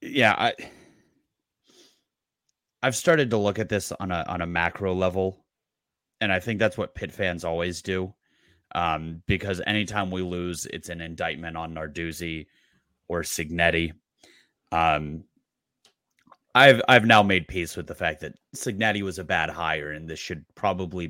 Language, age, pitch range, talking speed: English, 30-49, 85-105 Hz, 155 wpm